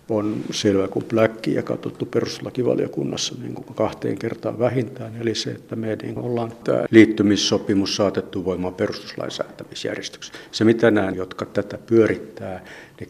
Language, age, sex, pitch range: Finnish, 60-79, male, 100-115 Hz